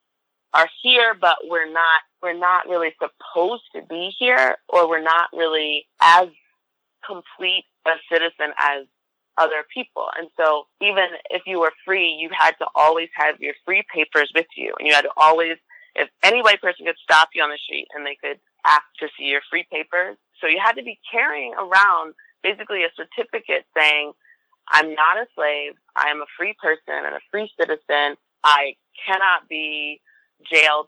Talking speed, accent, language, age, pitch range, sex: 180 wpm, American, English, 20-39, 150-180 Hz, female